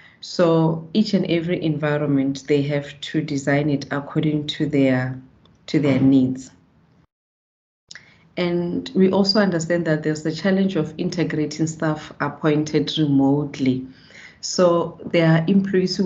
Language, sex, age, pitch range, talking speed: English, female, 40-59, 140-160 Hz, 125 wpm